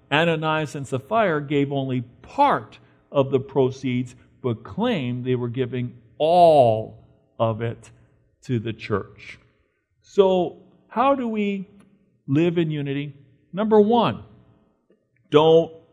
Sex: male